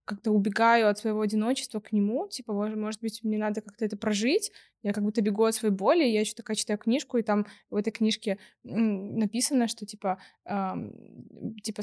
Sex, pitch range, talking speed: female, 205-225 Hz, 185 wpm